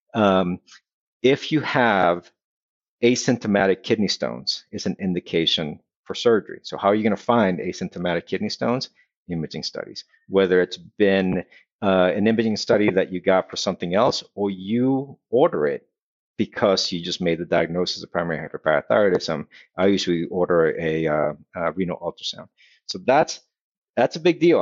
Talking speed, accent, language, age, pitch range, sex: 155 wpm, American, English, 50-69, 90-110 Hz, male